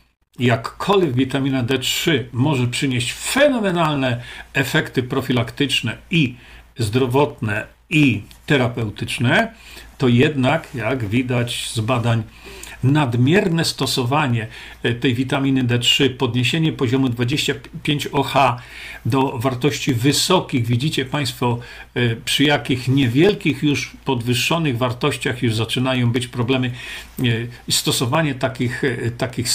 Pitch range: 125-150 Hz